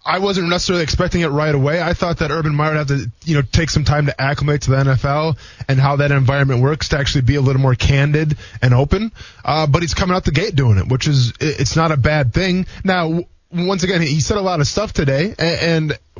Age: 20-39